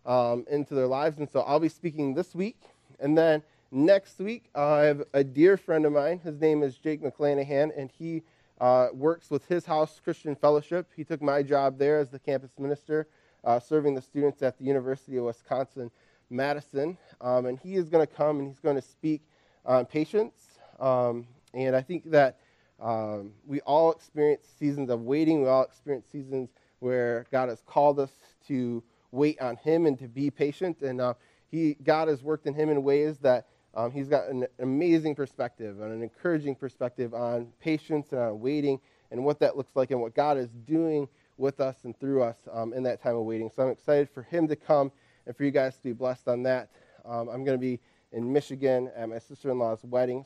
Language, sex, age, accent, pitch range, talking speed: English, male, 20-39, American, 125-150 Hz, 205 wpm